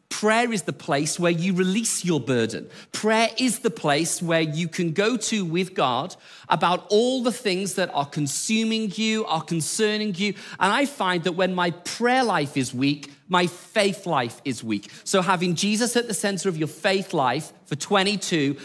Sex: male